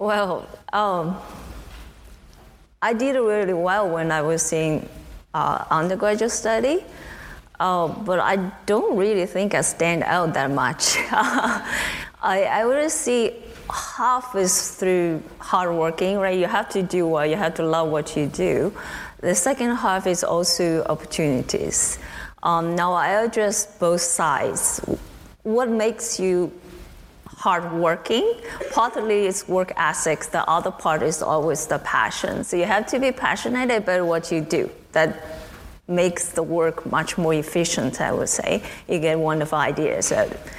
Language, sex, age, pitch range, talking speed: English, female, 20-39, 165-210 Hz, 145 wpm